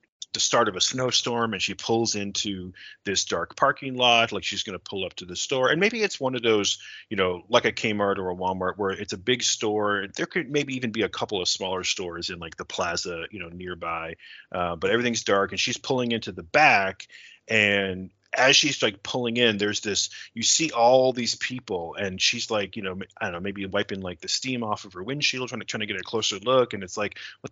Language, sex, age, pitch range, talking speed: English, male, 30-49, 100-120 Hz, 240 wpm